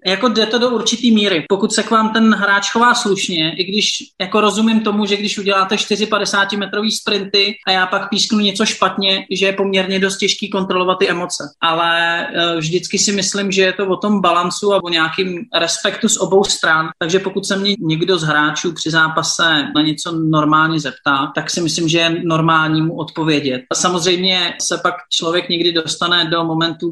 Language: Czech